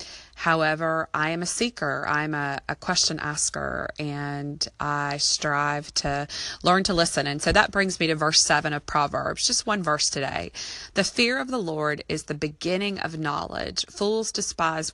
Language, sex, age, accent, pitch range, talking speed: English, female, 20-39, American, 150-205 Hz, 175 wpm